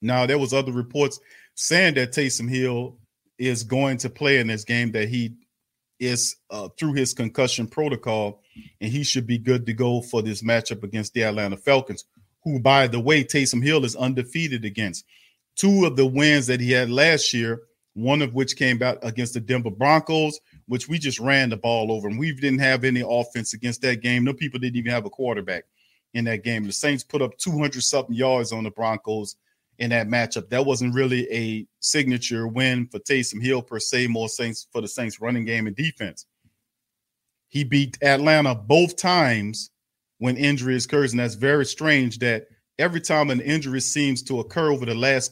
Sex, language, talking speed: male, English, 195 wpm